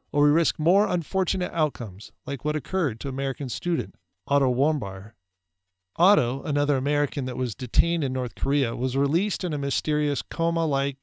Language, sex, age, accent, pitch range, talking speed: English, male, 40-59, American, 115-155 Hz, 160 wpm